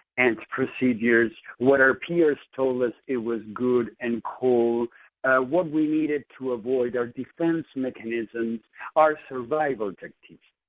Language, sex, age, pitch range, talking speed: English, male, 60-79, 110-155 Hz, 135 wpm